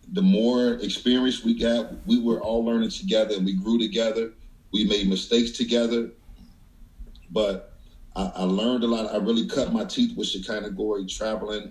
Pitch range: 95-125 Hz